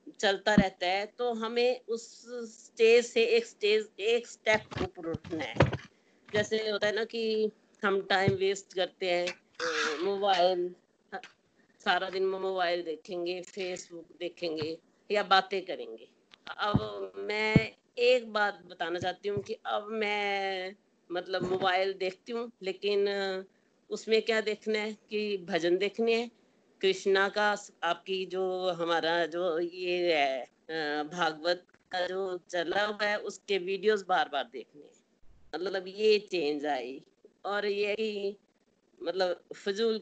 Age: 50-69